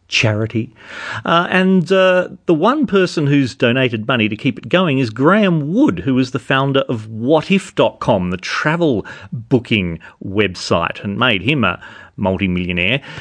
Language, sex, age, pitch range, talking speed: English, male, 40-59, 105-150 Hz, 145 wpm